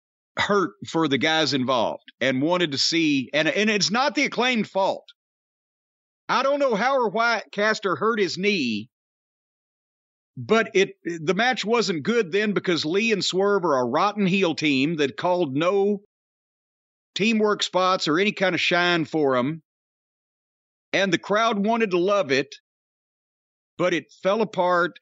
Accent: American